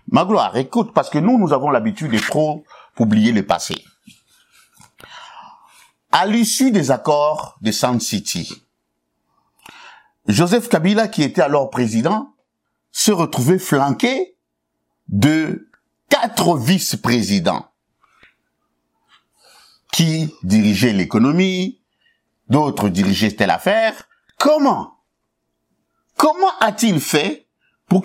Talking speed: 95 wpm